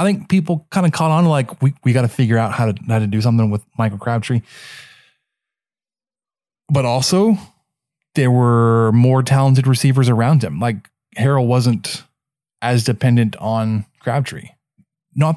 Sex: male